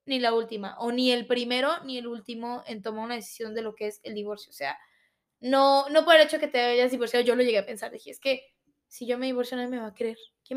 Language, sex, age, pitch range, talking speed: Spanish, female, 20-39, 250-310 Hz, 285 wpm